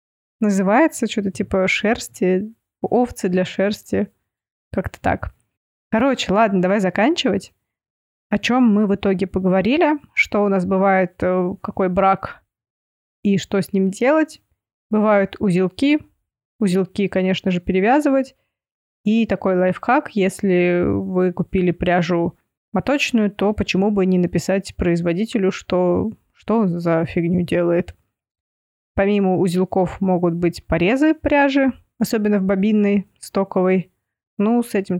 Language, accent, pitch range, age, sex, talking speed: Russian, native, 180-210 Hz, 20-39, female, 120 wpm